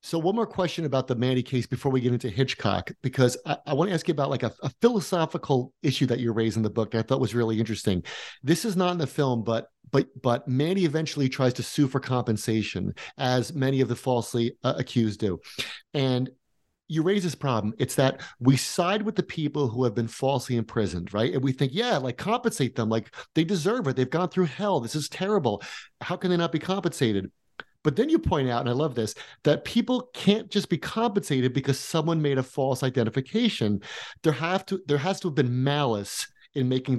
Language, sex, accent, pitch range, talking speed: English, male, American, 120-165 Hz, 220 wpm